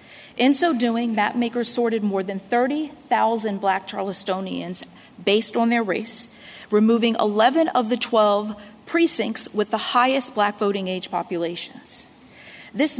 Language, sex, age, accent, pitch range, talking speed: English, female, 40-59, American, 205-240 Hz, 130 wpm